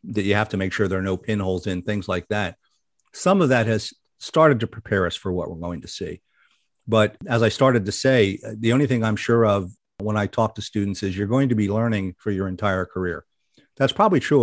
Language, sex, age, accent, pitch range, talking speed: English, male, 50-69, American, 95-115 Hz, 240 wpm